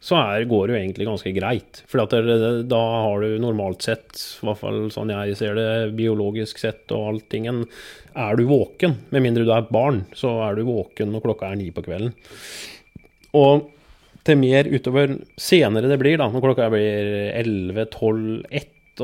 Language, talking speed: English, 195 wpm